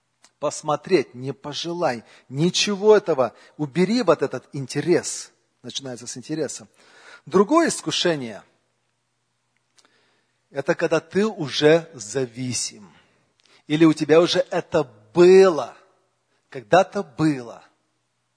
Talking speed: 90 wpm